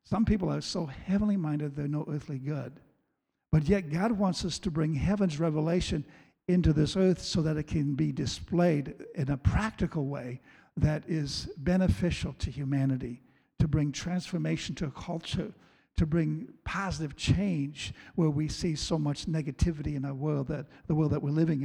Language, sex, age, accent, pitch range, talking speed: English, male, 60-79, American, 145-180 Hz, 170 wpm